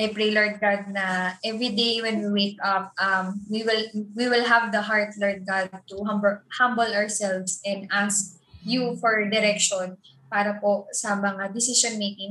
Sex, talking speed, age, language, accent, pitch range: female, 165 wpm, 20-39, Filipino, native, 195-230 Hz